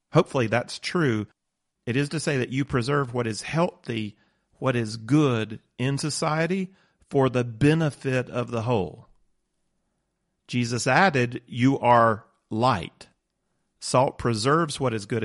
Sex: male